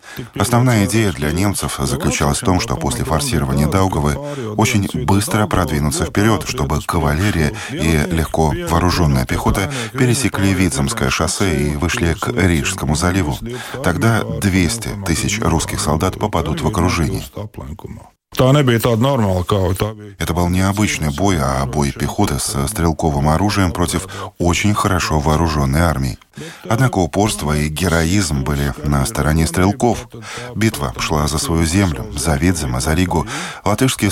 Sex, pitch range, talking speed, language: male, 75-105 Hz, 125 wpm, Russian